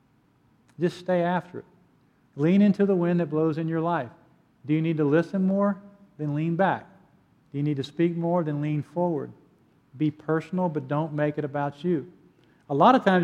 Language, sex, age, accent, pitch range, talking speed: English, male, 50-69, American, 150-175 Hz, 195 wpm